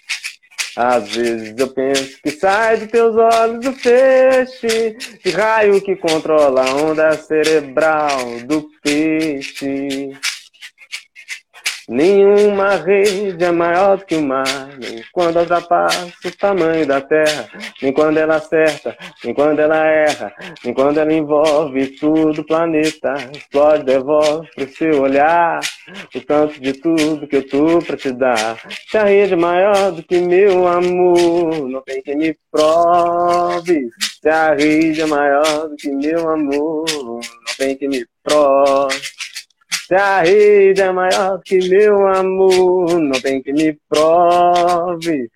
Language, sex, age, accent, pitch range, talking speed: Portuguese, male, 20-39, Brazilian, 140-180 Hz, 140 wpm